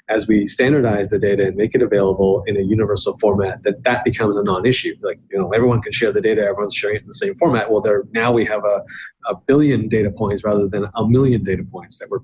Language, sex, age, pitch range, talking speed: English, male, 30-49, 105-130 Hz, 250 wpm